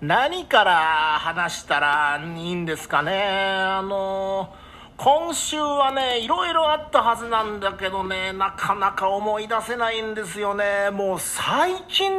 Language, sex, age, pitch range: Japanese, male, 40-59, 175-280 Hz